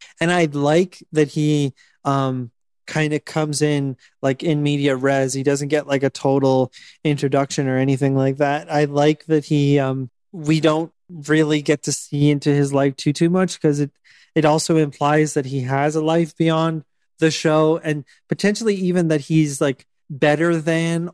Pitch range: 140-160 Hz